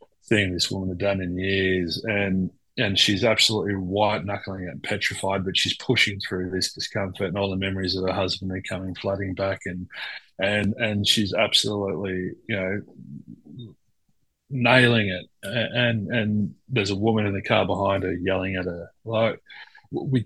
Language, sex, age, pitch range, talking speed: English, male, 30-49, 95-120 Hz, 165 wpm